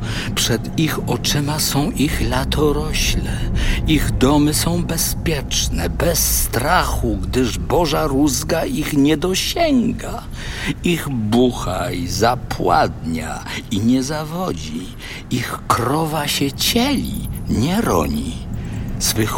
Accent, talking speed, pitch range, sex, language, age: native, 100 wpm, 95-155 Hz, male, Polish, 50-69